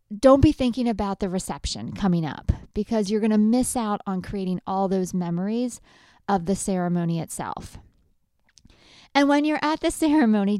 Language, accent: English, American